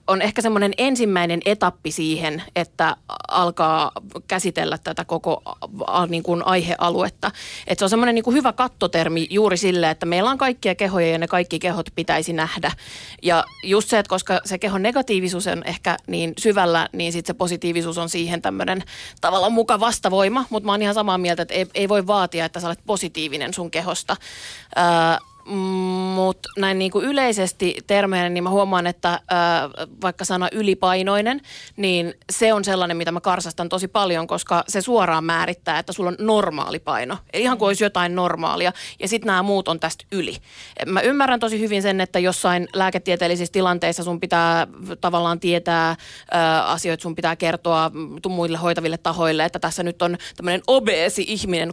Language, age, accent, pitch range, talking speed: Finnish, 30-49, native, 170-200 Hz, 170 wpm